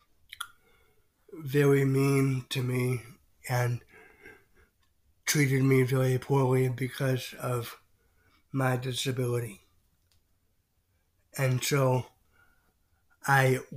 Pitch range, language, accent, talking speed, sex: 110-135 Hz, English, American, 70 wpm, male